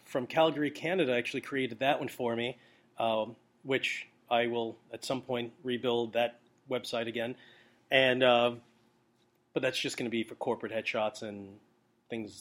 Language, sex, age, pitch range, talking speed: English, male, 40-59, 120-150 Hz, 160 wpm